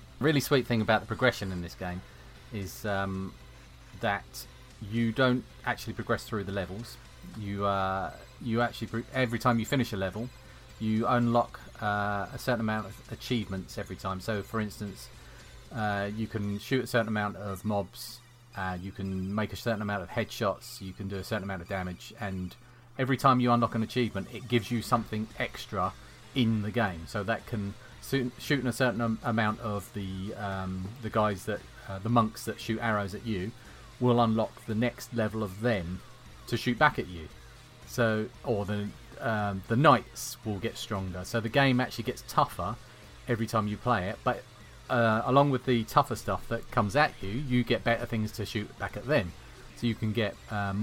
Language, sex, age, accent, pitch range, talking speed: English, male, 30-49, British, 100-120 Hz, 190 wpm